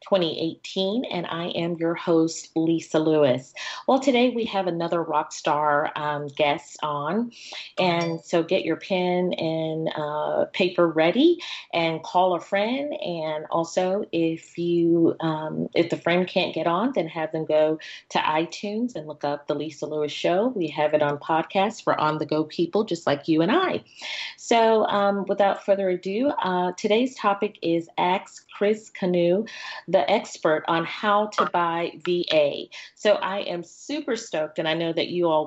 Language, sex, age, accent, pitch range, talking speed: English, female, 40-59, American, 155-195 Hz, 170 wpm